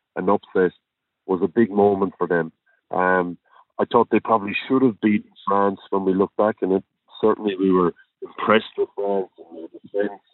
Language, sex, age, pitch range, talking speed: English, male, 40-59, 90-105 Hz, 180 wpm